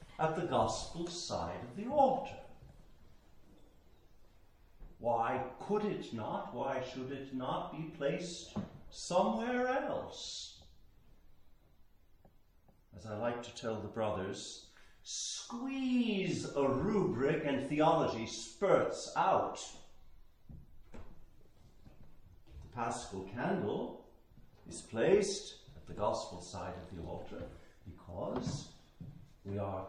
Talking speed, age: 95 wpm, 50-69